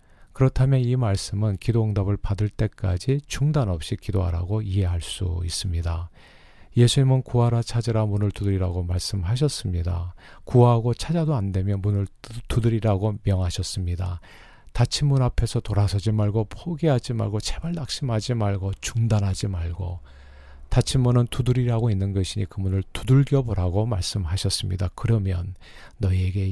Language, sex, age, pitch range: Korean, male, 40-59, 95-120 Hz